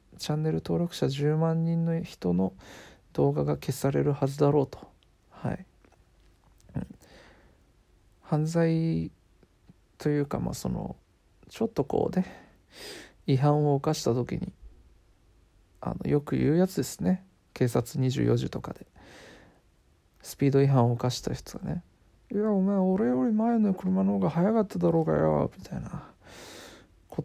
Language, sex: Japanese, male